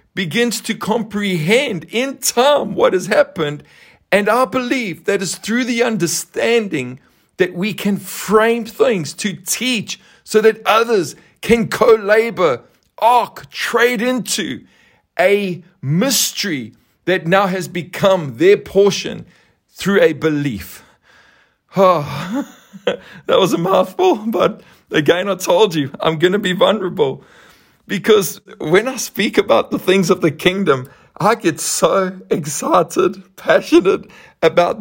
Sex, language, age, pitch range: male, English, 50-69, 160-225 Hz